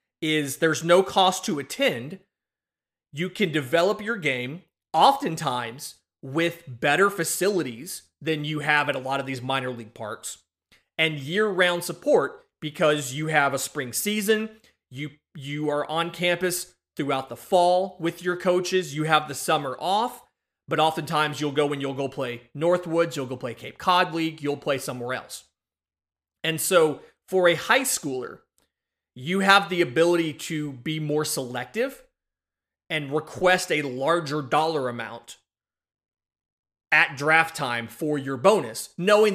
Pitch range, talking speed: 135-170 Hz, 150 wpm